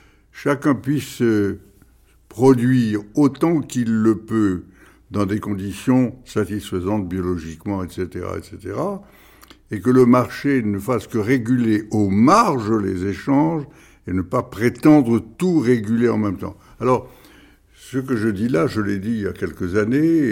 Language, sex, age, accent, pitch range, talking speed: French, male, 60-79, French, 95-120 Hz, 145 wpm